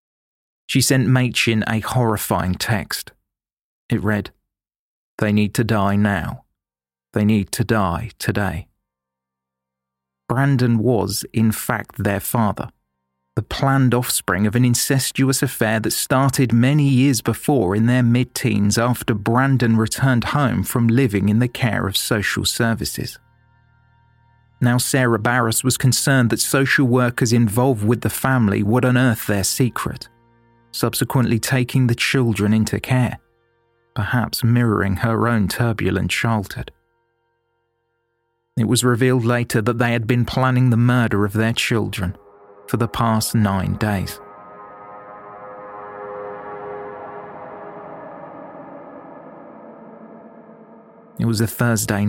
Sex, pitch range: male, 105-125 Hz